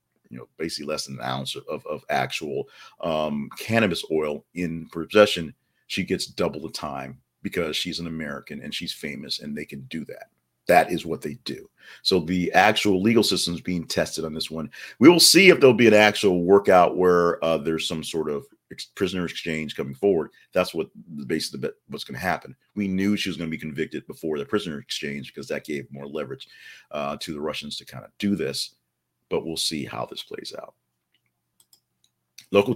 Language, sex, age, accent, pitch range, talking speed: English, male, 40-59, American, 80-105 Hz, 205 wpm